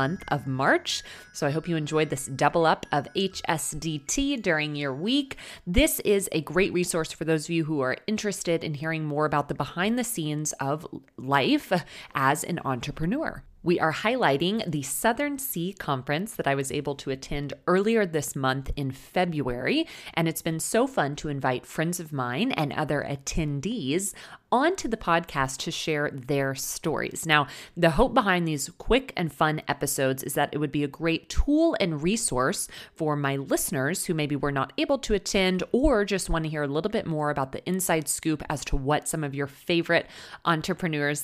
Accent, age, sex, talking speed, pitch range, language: American, 30-49, female, 190 wpm, 145-185 Hz, English